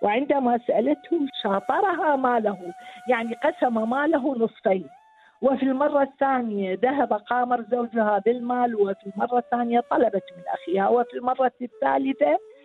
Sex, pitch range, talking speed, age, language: female, 210-295 Hz, 115 wpm, 50-69, English